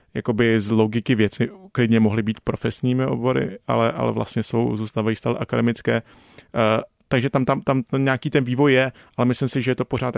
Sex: male